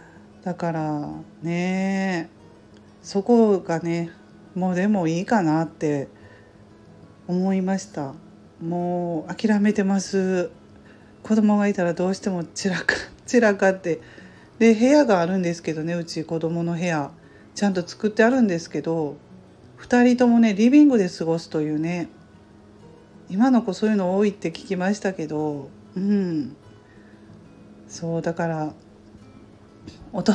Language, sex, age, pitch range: Japanese, female, 40-59, 160-200 Hz